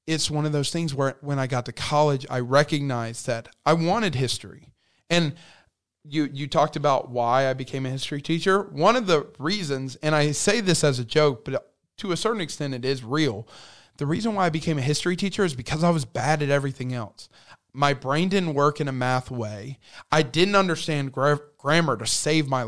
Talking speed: 210 wpm